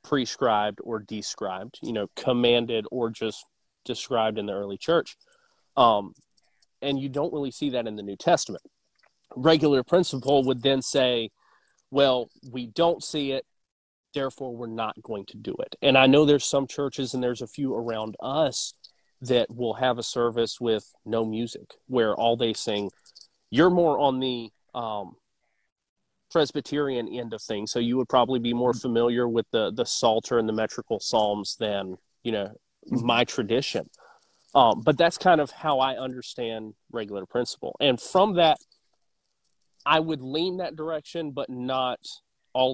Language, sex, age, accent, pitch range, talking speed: English, male, 30-49, American, 110-135 Hz, 160 wpm